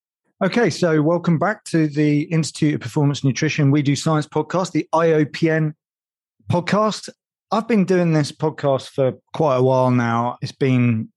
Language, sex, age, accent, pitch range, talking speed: English, male, 30-49, British, 120-150 Hz, 155 wpm